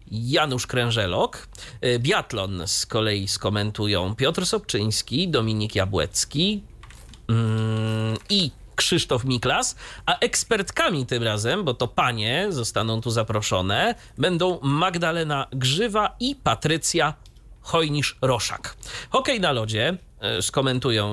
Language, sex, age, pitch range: Polish, male, 30-49, 110-175 Hz